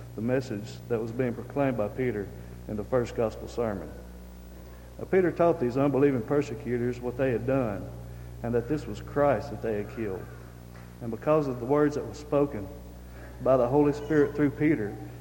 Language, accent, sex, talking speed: English, American, male, 180 wpm